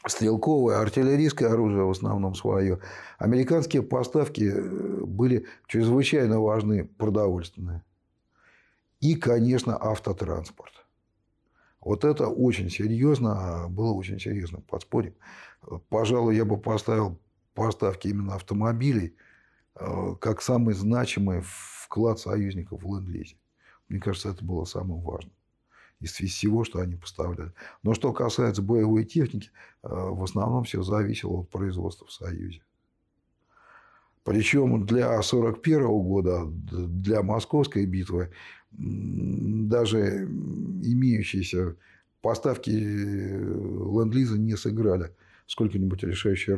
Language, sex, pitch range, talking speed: Russian, male, 95-115 Hz, 100 wpm